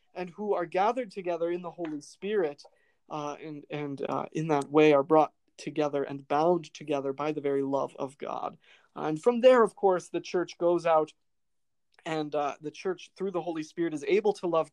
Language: English